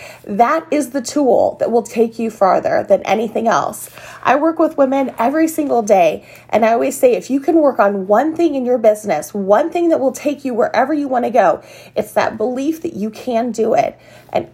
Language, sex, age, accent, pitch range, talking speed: English, female, 30-49, American, 220-300 Hz, 220 wpm